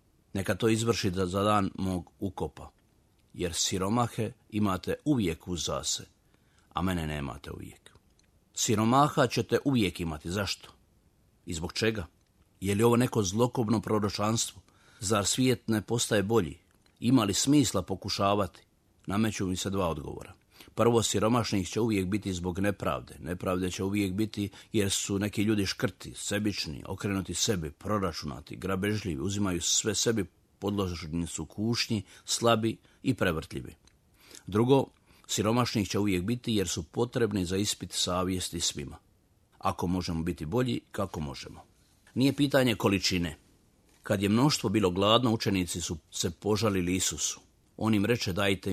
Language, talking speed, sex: Croatian, 135 wpm, male